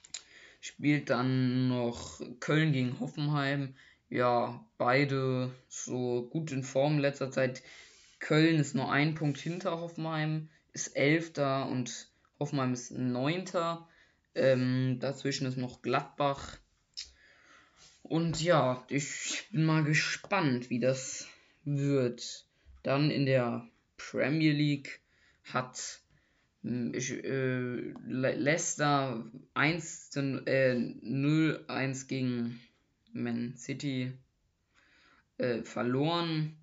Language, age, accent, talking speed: German, 20-39, German, 95 wpm